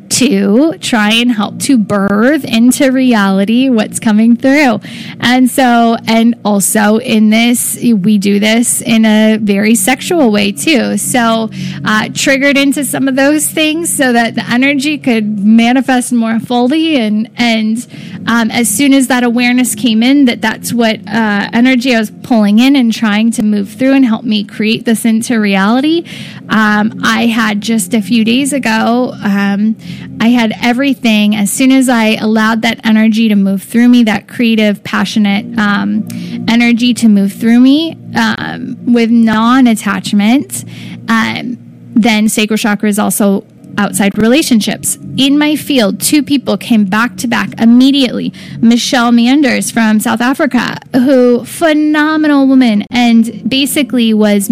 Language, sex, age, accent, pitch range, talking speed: English, female, 10-29, American, 215-250 Hz, 150 wpm